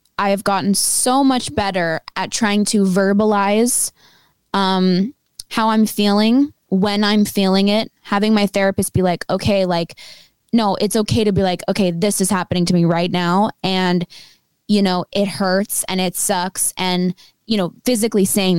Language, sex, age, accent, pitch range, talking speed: English, female, 10-29, American, 185-215 Hz, 170 wpm